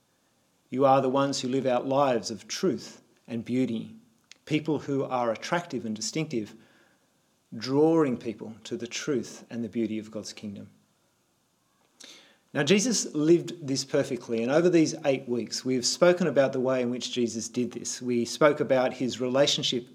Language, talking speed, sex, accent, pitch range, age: English, 165 wpm, male, Australian, 120-160 Hz, 40-59